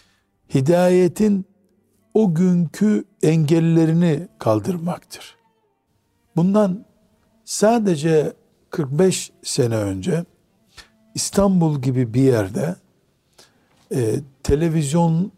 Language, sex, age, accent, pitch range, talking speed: Turkish, male, 60-79, native, 130-170 Hz, 60 wpm